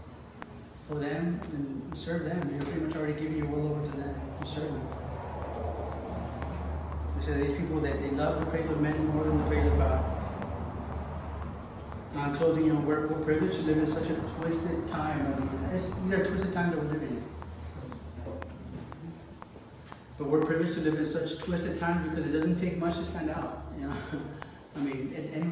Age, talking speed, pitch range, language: 30-49, 180 wpm, 120-160 Hz, English